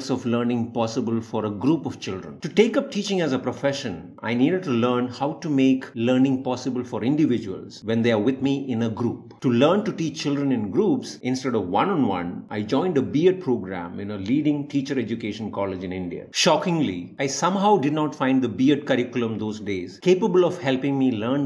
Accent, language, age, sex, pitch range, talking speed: Indian, English, 50-69, male, 110-140 Hz, 205 wpm